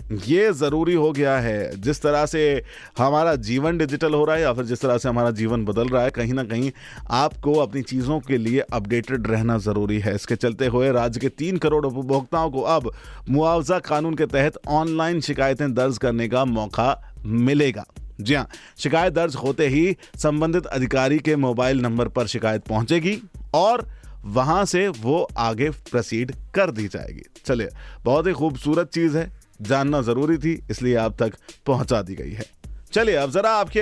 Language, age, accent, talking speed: Hindi, 30-49, native, 175 wpm